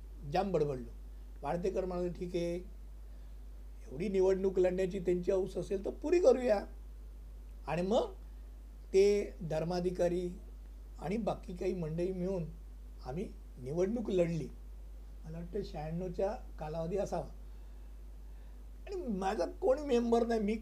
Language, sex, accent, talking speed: Hindi, male, native, 85 wpm